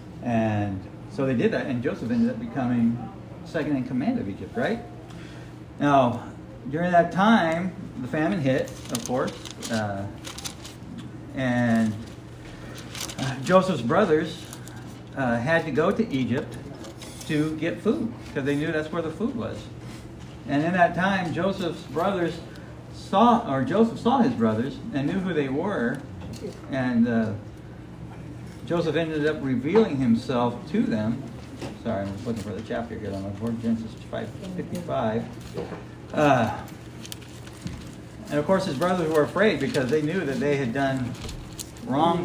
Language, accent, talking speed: English, American, 150 wpm